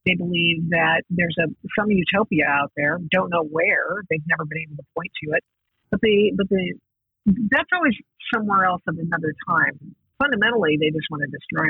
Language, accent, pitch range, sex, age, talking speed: English, American, 160-195 Hz, female, 50-69, 195 wpm